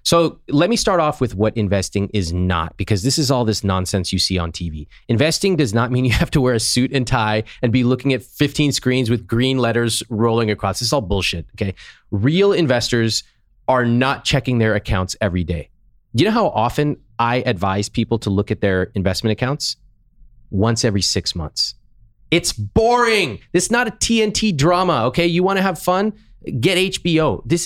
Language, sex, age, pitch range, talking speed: English, male, 30-49, 100-140 Hz, 195 wpm